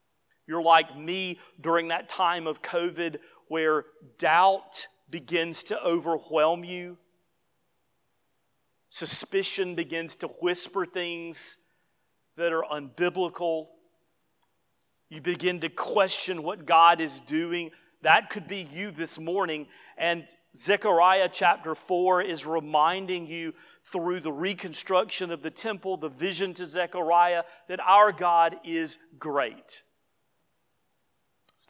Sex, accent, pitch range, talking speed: male, American, 155-180 Hz, 110 wpm